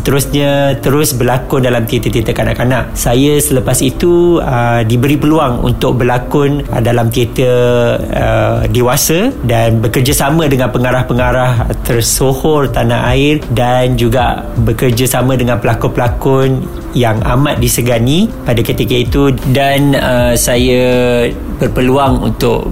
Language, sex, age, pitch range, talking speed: Malay, male, 50-69, 120-135 Hz, 105 wpm